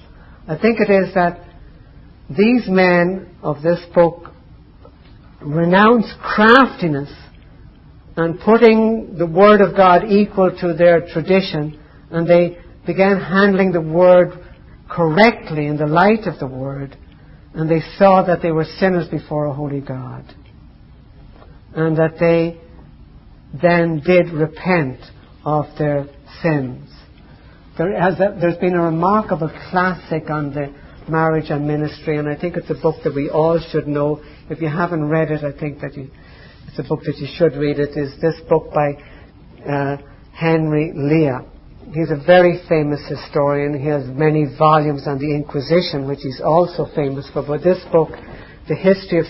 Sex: female